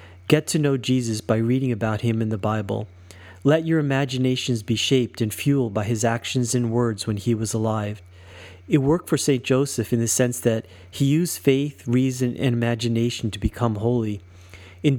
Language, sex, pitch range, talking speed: English, male, 100-130 Hz, 185 wpm